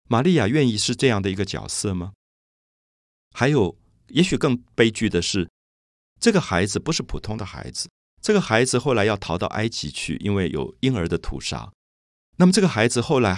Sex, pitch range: male, 80-120 Hz